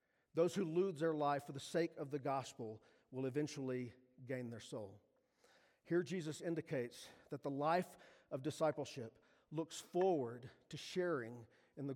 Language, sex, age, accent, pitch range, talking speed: English, male, 40-59, American, 130-160 Hz, 150 wpm